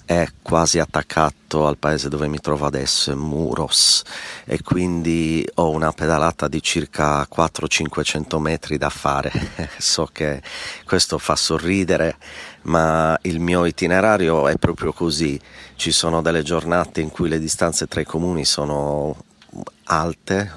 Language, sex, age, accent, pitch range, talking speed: Italian, male, 40-59, native, 75-80 Hz, 135 wpm